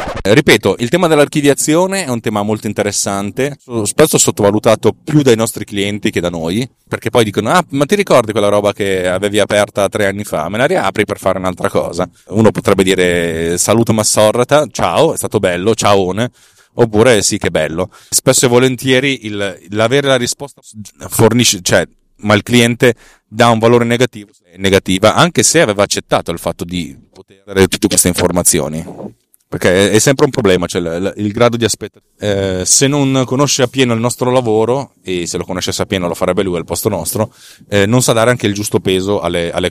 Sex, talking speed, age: male, 185 wpm, 30-49